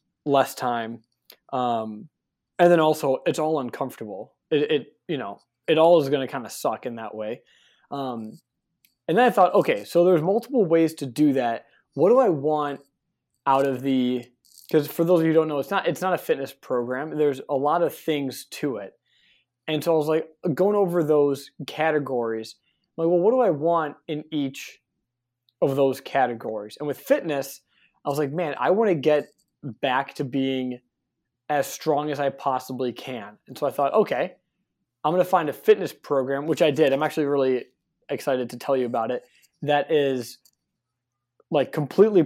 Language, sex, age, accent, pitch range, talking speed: English, male, 20-39, American, 125-155 Hz, 190 wpm